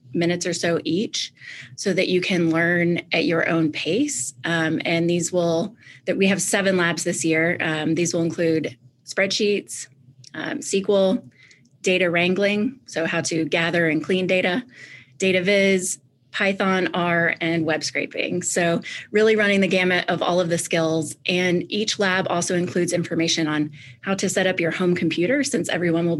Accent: American